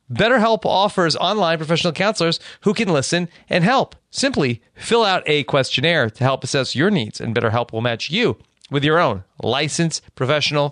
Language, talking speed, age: English, 170 wpm, 40-59